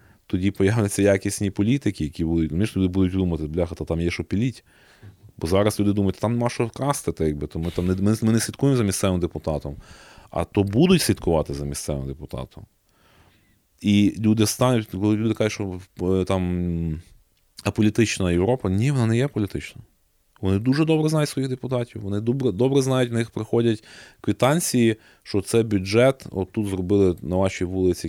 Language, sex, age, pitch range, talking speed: Ukrainian, male, 20-39, 85-115 Hz, 170 wpm